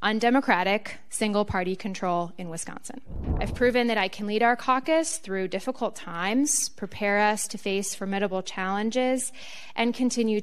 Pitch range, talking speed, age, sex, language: 160-225 Hz, 140 wpm, 20-39, female, English